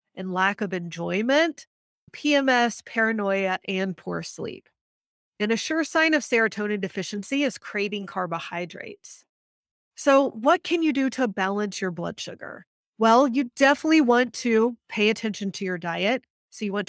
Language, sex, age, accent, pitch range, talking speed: English, female, 30-49, American, 195-235 Hz, 150 wpm